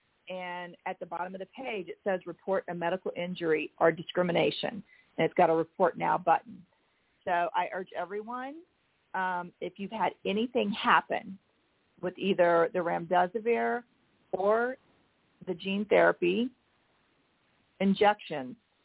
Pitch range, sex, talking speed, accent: 180-230 Hz, female, 130 wpm, American